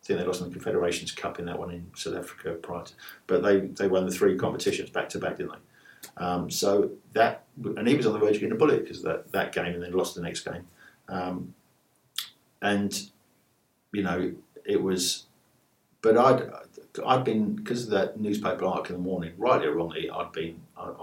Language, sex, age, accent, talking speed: English, male, 50-69, British, 210 wpm